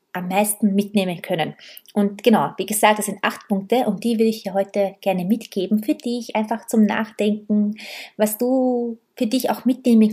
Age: 20-39